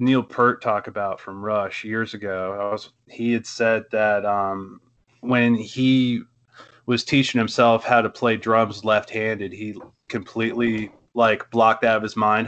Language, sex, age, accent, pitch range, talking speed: English, male, 20-39, American, 105-120 Hz, 160 wpm